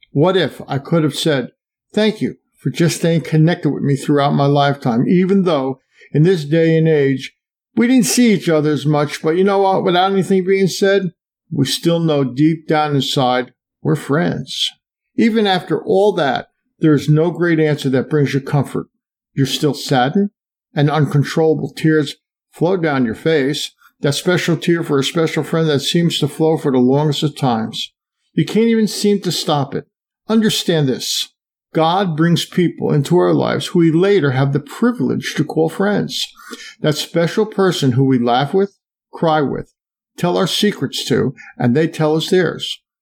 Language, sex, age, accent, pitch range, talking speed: English, male, 50-69, American, 145-190 Hz, 180 wpm